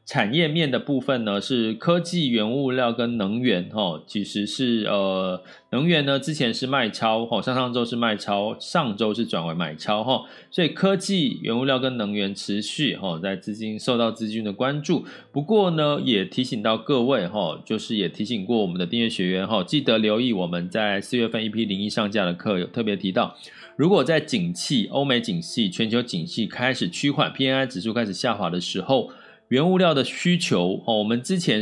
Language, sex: Chinese, male